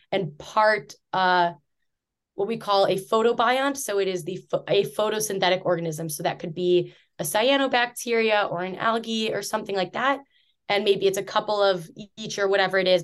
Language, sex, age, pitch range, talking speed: English, female, 20-39, 180-210 Hz, 185 wpm